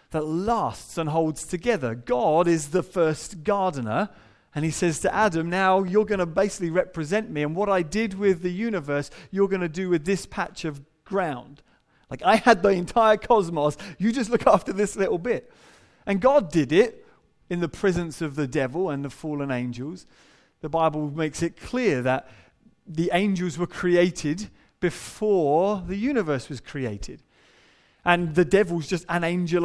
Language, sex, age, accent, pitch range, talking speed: English, male, 30-49, British, 140-190 Hz, 175 wpm